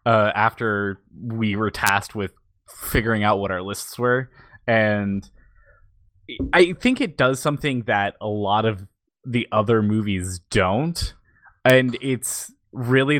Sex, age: male, 20-39